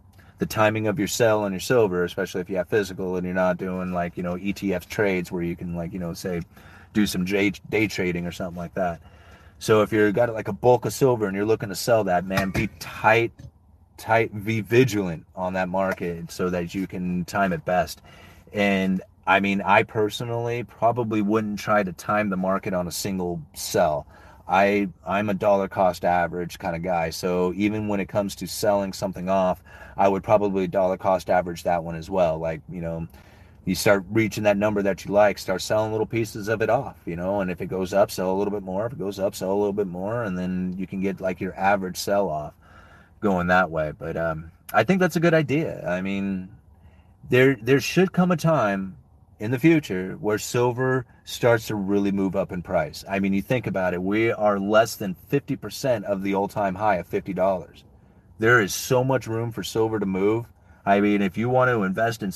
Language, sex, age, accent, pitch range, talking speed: English, male, 30-49, American, 90-110 Hz, 220 wpm